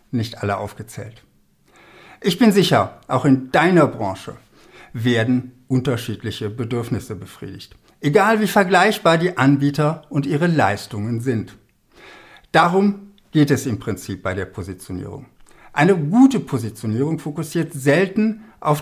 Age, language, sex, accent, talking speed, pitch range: 60-79, German, male, German, 120 wpm, 120-170 Hz